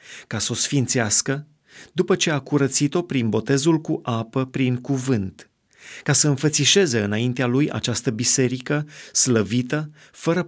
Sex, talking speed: male, 130 wpm